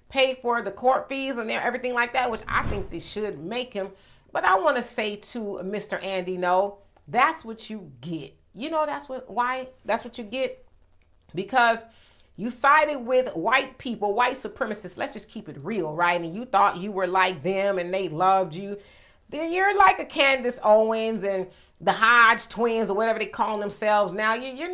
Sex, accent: female, American